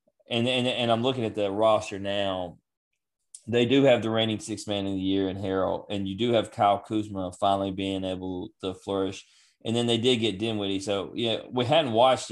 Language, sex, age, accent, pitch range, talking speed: English, male, 20-39, American, 95-115 Hz, 210 wpm